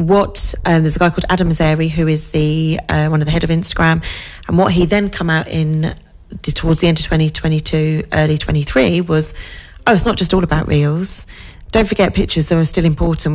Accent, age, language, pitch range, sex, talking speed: British, 30-49, English, 150-180 Hz, female, 205 wpm